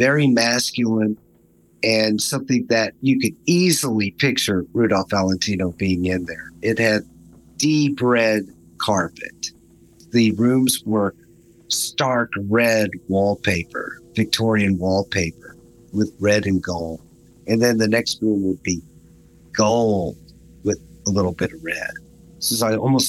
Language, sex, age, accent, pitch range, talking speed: English, male, 50-69, American, 90-125 Hz, 125 wpm